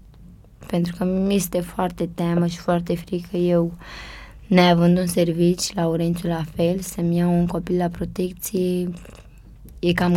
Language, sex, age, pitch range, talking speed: Romanian, female, 20-39, 165-180 Hz, 160 wpm